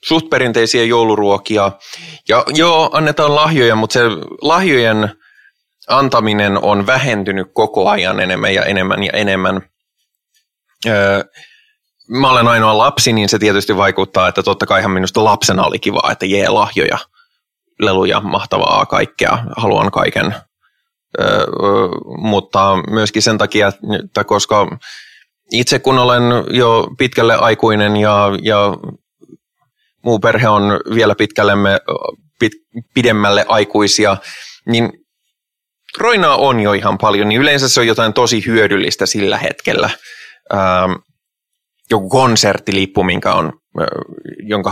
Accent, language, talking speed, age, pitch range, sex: native, Finnish, 120 wpm, 20-39, 100-135 Hz, male